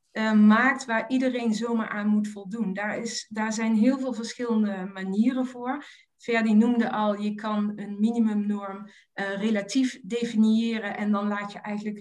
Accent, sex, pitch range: Dutch, female, 205-240 Hz